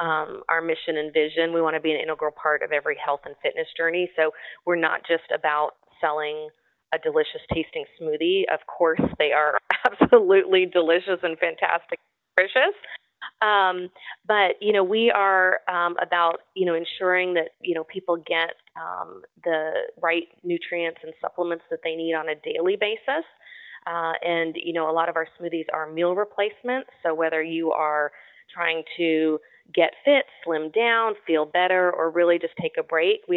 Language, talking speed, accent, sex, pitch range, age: English, 175 wpm, American, female, 155-185 Hz, 30-49